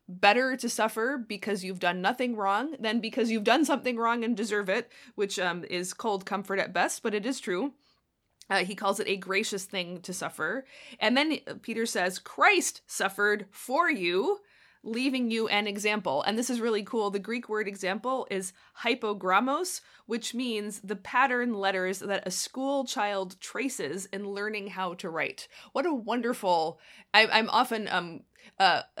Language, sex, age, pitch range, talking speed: English, female, 20-39, 190-245 Hz, 170 wpm